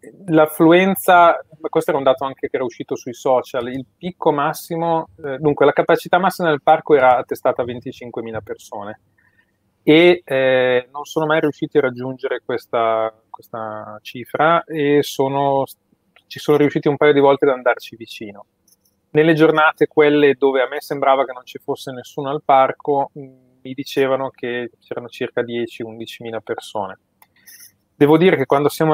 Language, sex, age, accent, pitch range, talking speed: Italian, male, 30-49, native, 120-155 Hz, 155 wpm